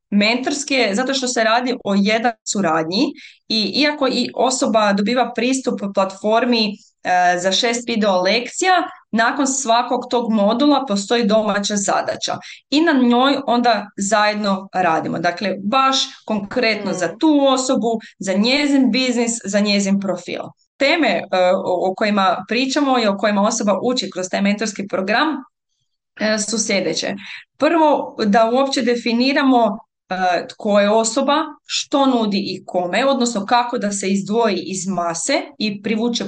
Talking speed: 135 wpm